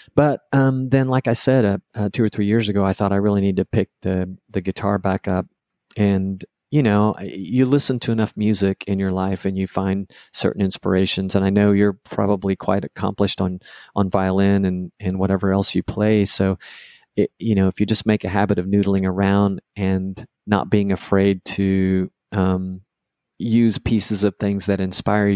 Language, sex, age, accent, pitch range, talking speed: English, male, 40-59, American, 95-105 Hz, 195 wpm